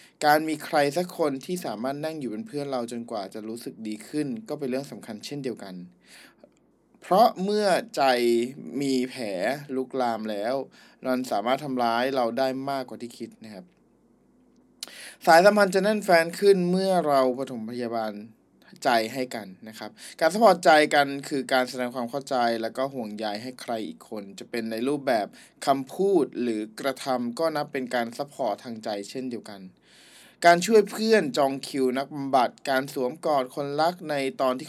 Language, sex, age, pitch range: Thai, male, 20-39, 120-150 Hz